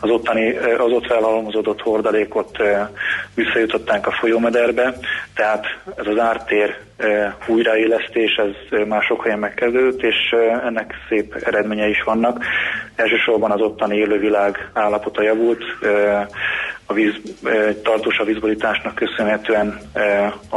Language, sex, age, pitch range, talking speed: Hungarian, male, 20-39, 105-115 Hz, 130 wpm